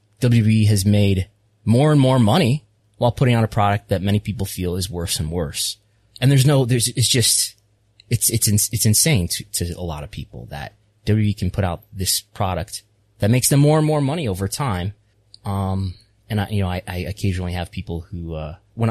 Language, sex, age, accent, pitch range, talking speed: English, male, 20-39, American, 90-115 Hz, 210 wpm